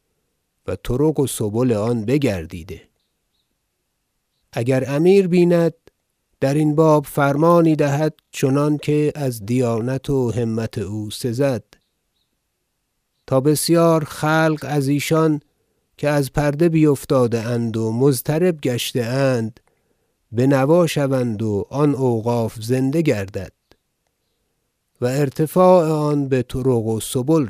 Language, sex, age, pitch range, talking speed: Persian, male, 50-69, 110-145 Hz, 110 wpm